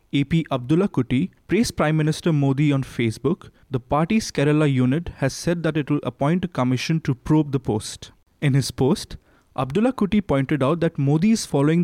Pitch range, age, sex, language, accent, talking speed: 130-170 Hz, 20-39, male, English, Indian, 180 wpm